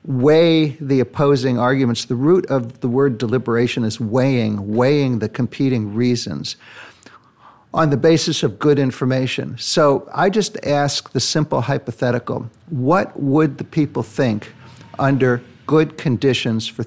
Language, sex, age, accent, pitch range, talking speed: English, male, 60-79, American, 120-145 Hz, 135 wpm